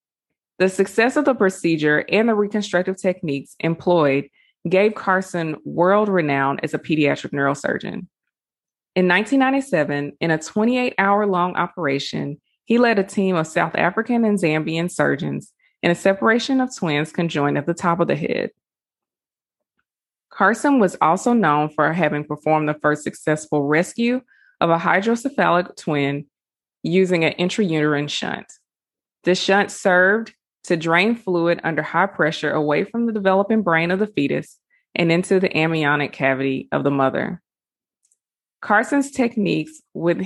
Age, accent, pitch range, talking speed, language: 20-39, American, 150-205 Hz, 140 wpm, English